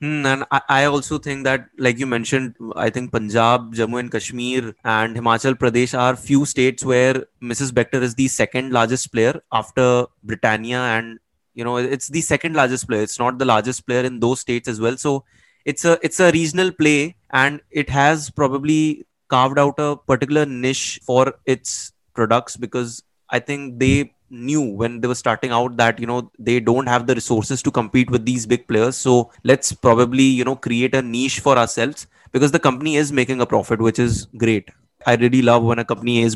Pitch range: 120-135 Hz